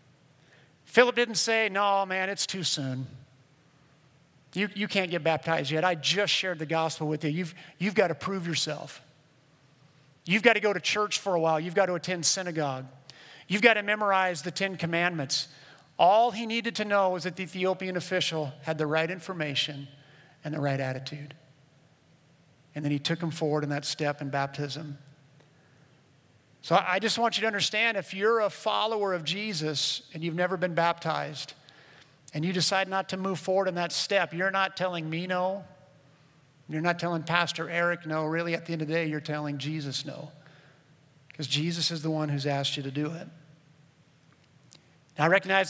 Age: 50-69